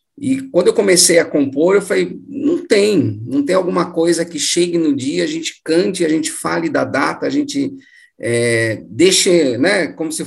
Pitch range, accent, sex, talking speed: 125-180 Hz, Brazilian, male, 195 wpm